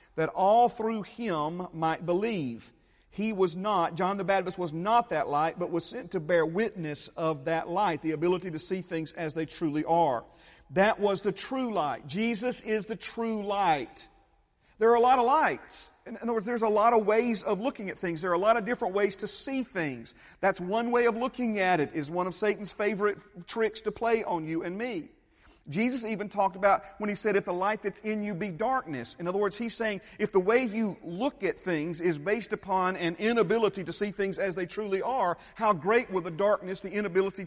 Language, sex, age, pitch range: English, male, 40-59, 165-215 Hz